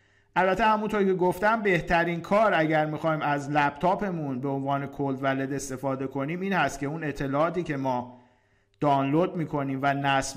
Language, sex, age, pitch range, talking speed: Persian, male, 50-69, 135-180 Hz, 155 wpm